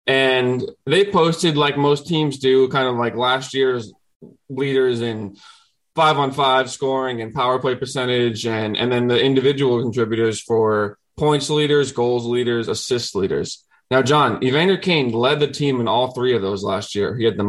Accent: American